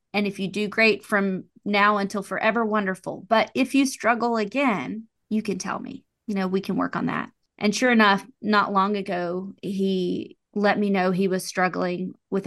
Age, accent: 30-49, American